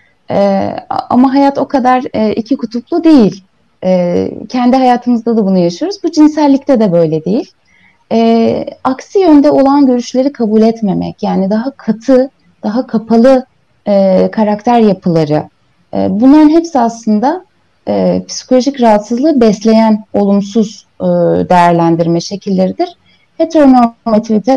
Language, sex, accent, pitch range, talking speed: Turkish, female, native, 175-275 Hz, 115 wpm